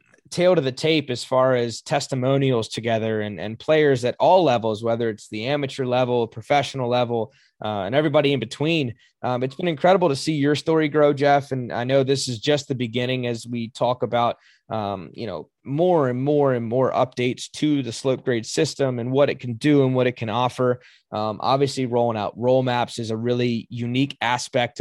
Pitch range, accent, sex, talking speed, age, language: 115-140 Hz, American, male, 205 wpm, 20-39, English